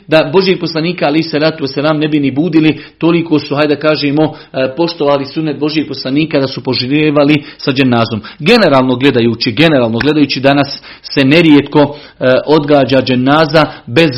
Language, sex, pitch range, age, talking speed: Croatian, male, 135-155 Hz, 40-59, 150 wpm